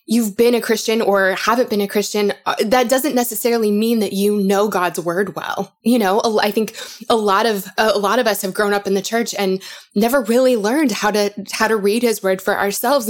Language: English